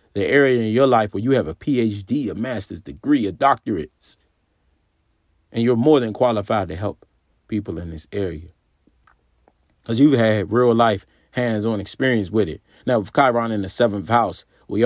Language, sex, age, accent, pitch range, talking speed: English, male, 40-59, American, 85-115 Hz, 175 wpm